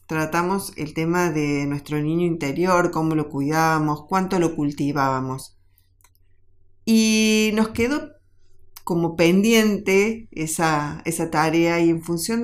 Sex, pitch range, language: female, 145-190 Hz, Spanish